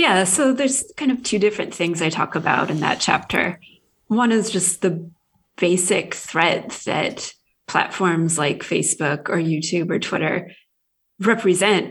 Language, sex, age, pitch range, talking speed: English, female, 20-39, 175-205 Hz, 145 wpm